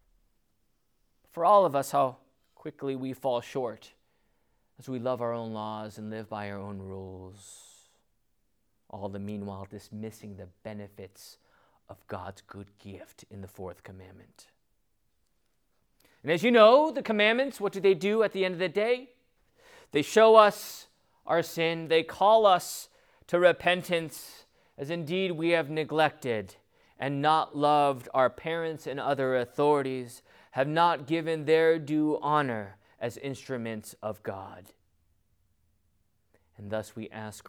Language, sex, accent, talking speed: English, male, American, 140 wpm